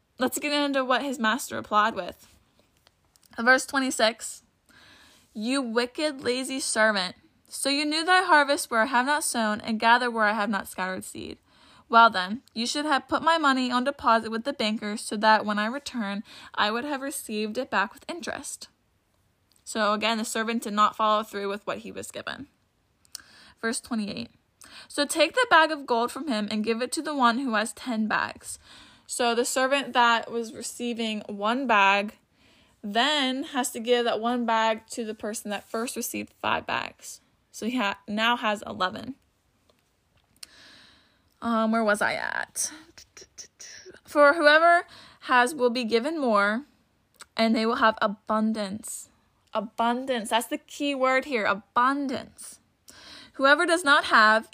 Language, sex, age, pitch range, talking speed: English, female, 10-29, 220-270 Hz, 165 wpm